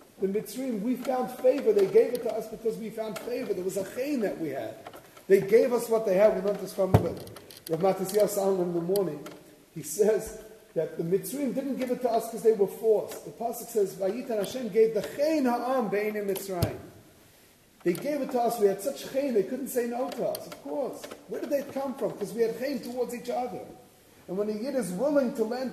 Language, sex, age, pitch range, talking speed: English, male, 30-49, 190-240 Hz, 225 wpm